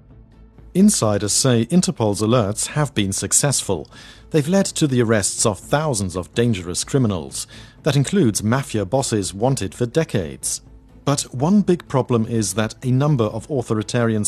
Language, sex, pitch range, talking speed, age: English, male, 110-140 Hz, 145 wpm, 40-59